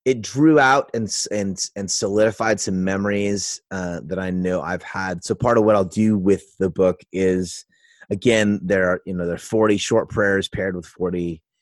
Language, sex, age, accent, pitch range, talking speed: English, male, 30-49, American, 90-105 Hz, 195 wpm